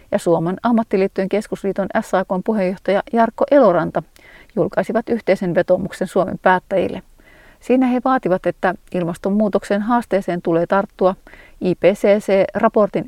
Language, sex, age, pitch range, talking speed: Finnish, female, 40-59, 185-230 Hz, 100 wpm